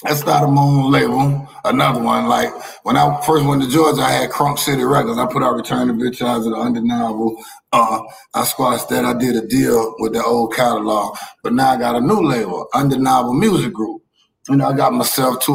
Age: 30-49